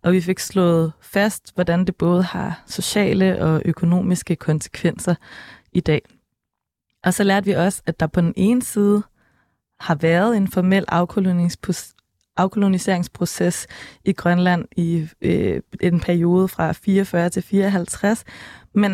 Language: Danish